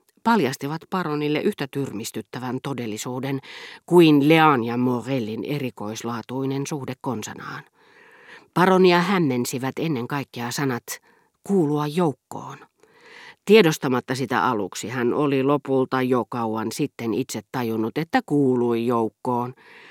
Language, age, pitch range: Finnish, 40-59, 125-170 Hz